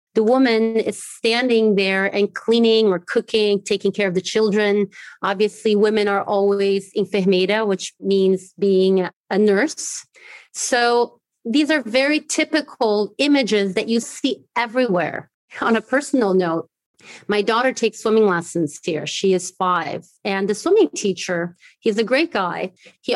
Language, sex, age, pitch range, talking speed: English, female, 30-49, 200-260 Hz, 145 wpm